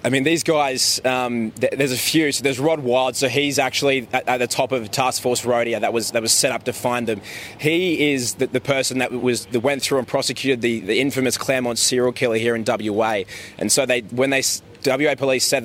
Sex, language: male, English